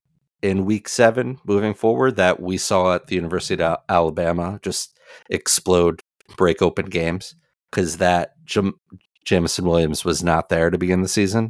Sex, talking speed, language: male, 150 wpm, English